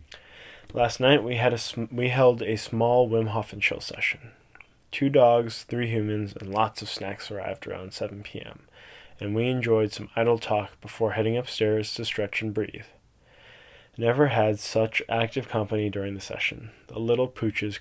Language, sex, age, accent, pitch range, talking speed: English, male, 10-29, American, 105-120 Hz, 170 wpm